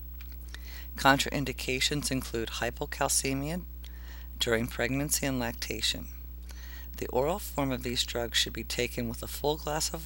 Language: English